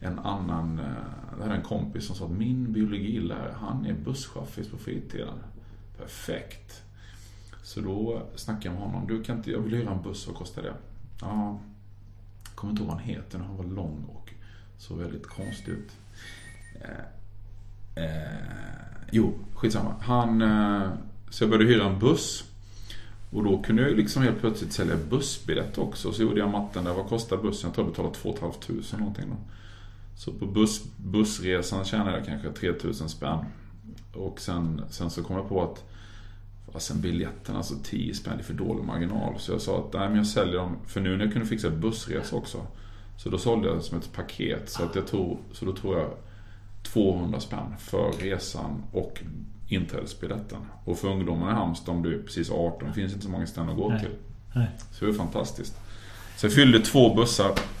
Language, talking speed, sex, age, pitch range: Swedish, 185 wpm, male, 30-49, 95-110 Hz